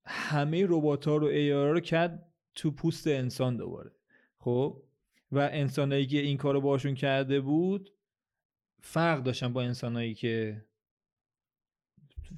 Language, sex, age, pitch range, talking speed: Persian, male, 30-49, 120-155 Hz, 130 wpm